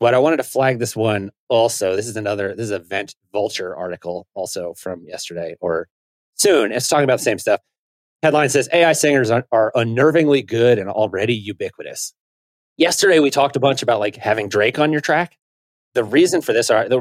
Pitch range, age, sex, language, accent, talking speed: 105-145 Hz, 30-49, male, English, American, 195 wpm